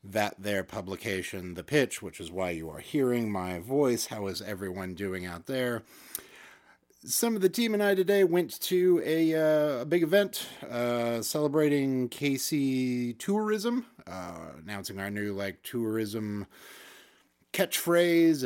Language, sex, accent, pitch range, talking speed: English, male, American, 105-135 Hz, 145 wpm